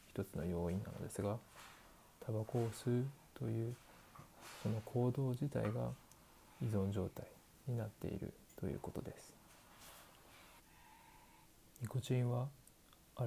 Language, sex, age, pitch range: Japanese, male, 20-39, 100-120 Hz